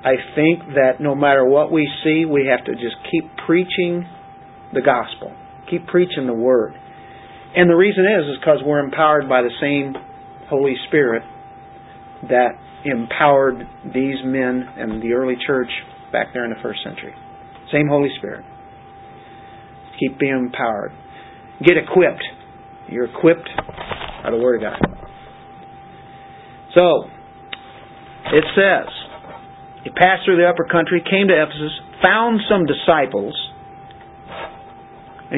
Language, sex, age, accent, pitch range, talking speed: English, male, 50-69, American, 130-175 Hz, 130 wpm